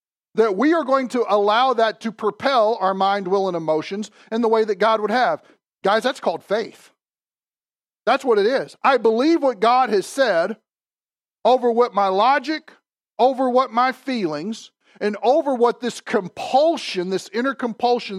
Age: 40-59